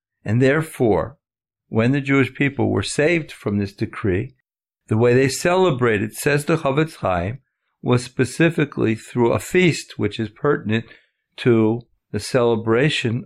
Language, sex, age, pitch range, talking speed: English, male, 50-69, 115-150 Hz, 135 wpm